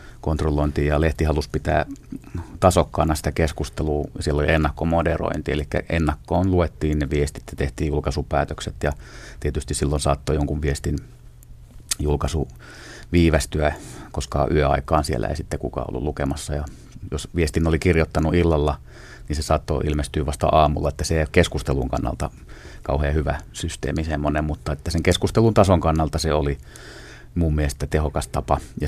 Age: 30-49